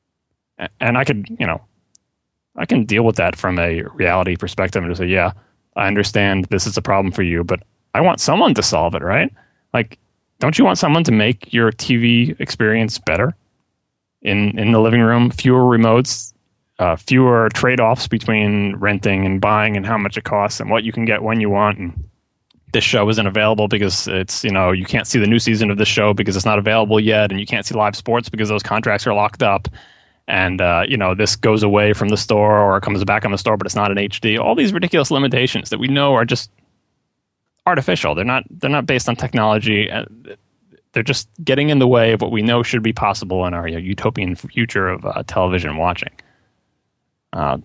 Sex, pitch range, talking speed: male, 95-115 Hz, 215 wpm